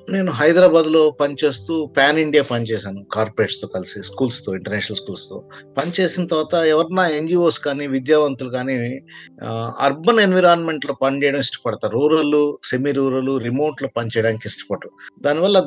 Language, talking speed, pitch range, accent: Telugu, 125 wpm, 125-165 Hz, native